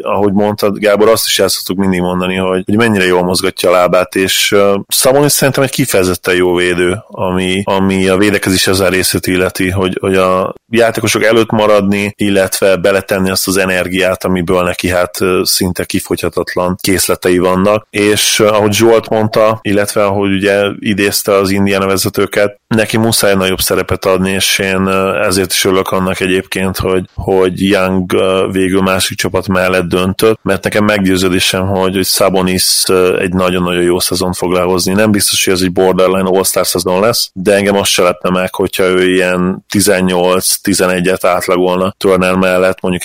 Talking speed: 160 wpm